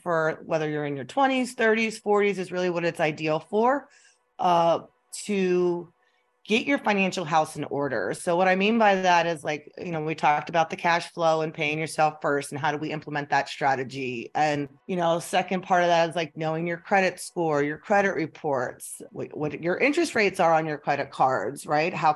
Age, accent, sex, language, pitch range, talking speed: 30-49, American, female, English, 150-185 Hz, 210 wpm